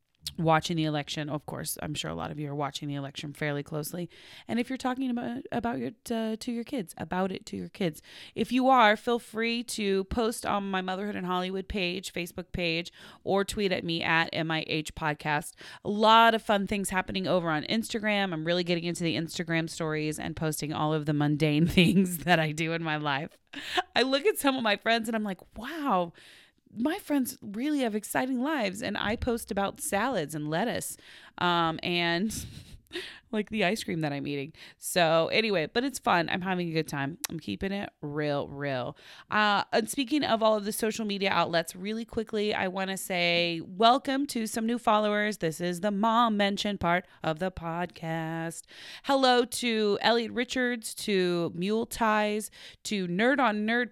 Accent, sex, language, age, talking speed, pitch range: American, female, English, 30-49, 195 wpm, 160-225 Hz